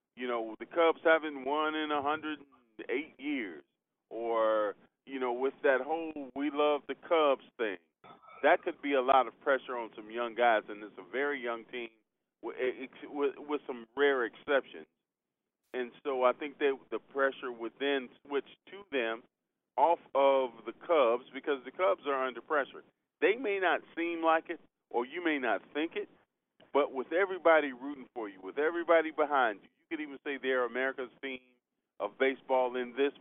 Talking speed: 175 wpm